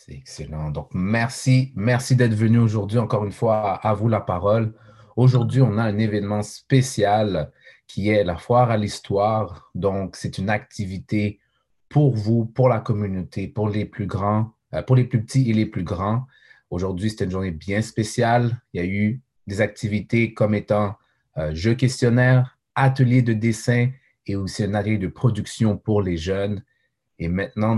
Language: French